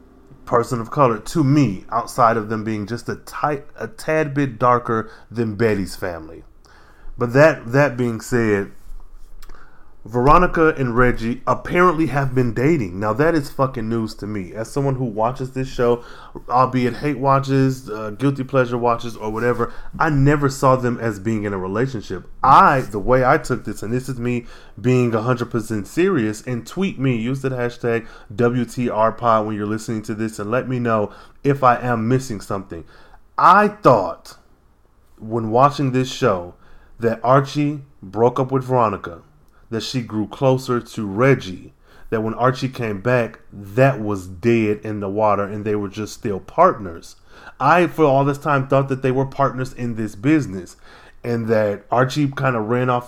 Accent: American